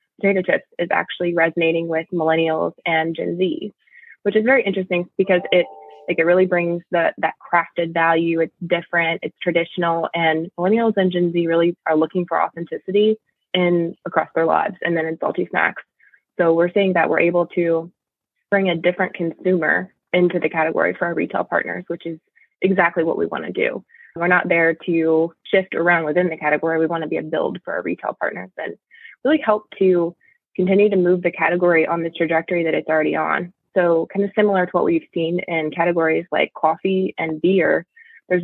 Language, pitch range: English, 160-180 Hz